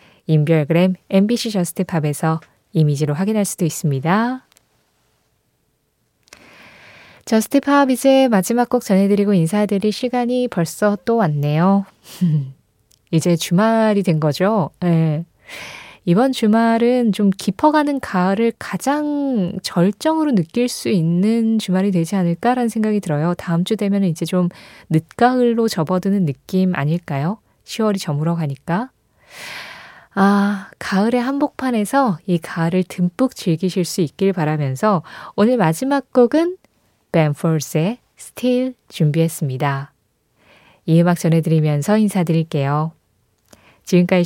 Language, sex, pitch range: Korean, female, 165-225 Hz